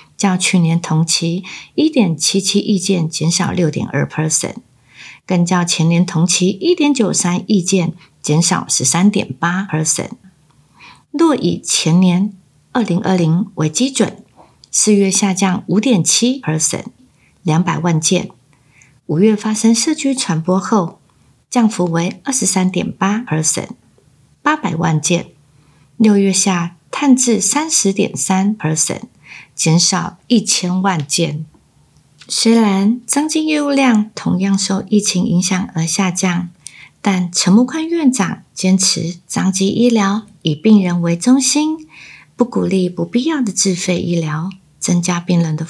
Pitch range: 170-220 Hz